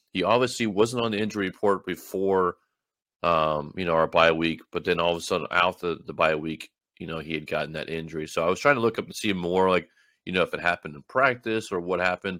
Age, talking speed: 30-49, 255 wpm